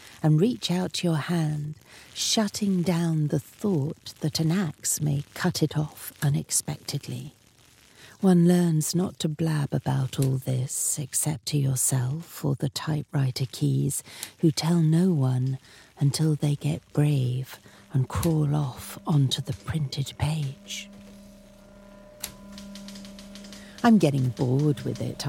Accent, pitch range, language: British, 140-185 Hz, English